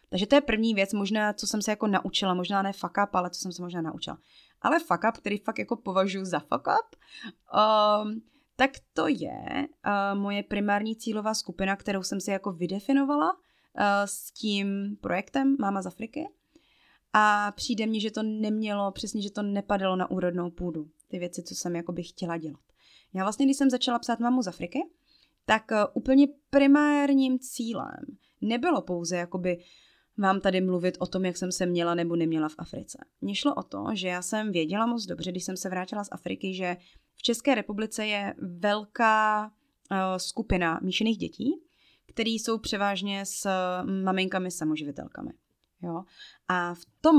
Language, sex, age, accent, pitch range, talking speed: Czech, female, 20-39, native, 185-235 Hz, 175 wpm